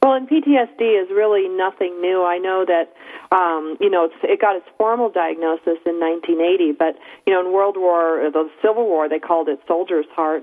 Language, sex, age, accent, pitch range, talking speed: English, female, 40-59, American, 170-210 Hz, 200 wpm